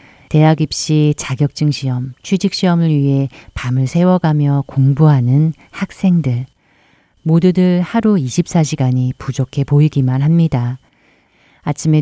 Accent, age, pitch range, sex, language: native, 40-59, 135-160 Hz, female, Korean